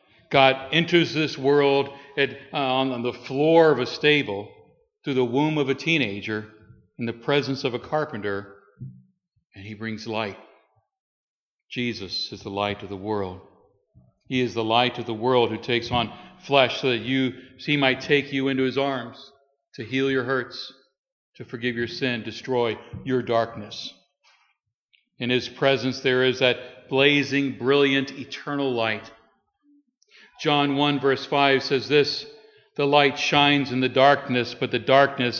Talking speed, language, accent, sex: 155 wpm, English, American, male